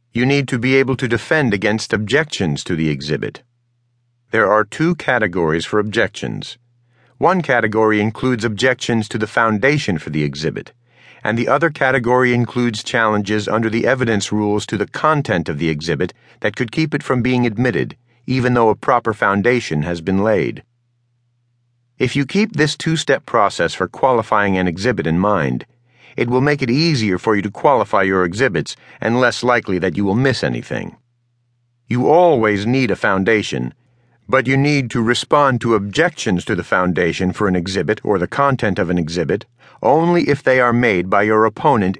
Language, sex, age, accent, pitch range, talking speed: English, male, 40-59, American, 105-125 Hz, 175 wpm